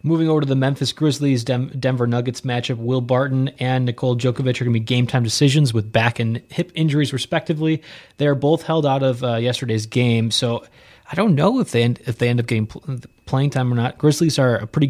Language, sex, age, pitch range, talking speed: English, male, 30-49, 115-135 Hz, 230 wpm